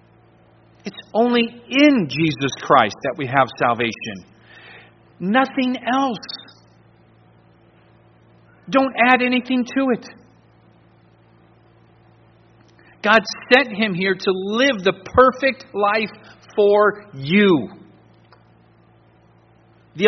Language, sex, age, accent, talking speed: English, male, 50-69, American, 85 wpm